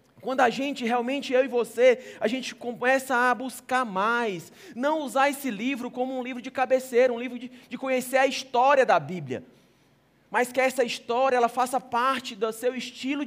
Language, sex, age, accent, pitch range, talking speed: Portuguese, male, 20-39, Brazilian, 245-275 Hz, 185 wpm